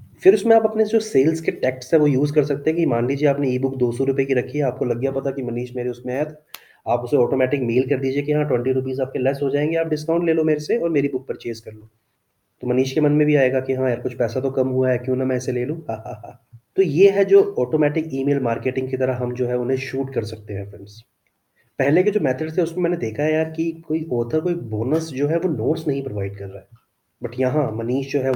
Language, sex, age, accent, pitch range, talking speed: Hindi, male, 30-49, native, 120-150 Hz, 280 wpm